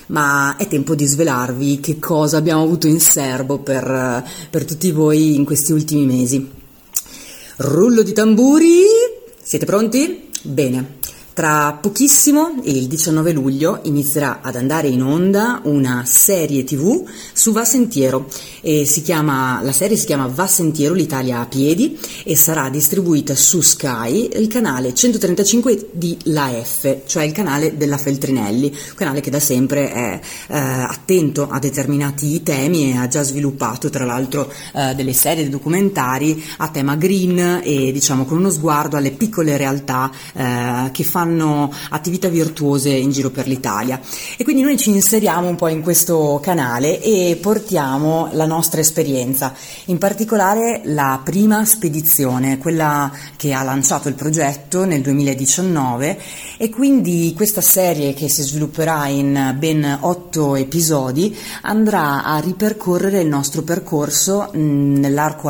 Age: 30-49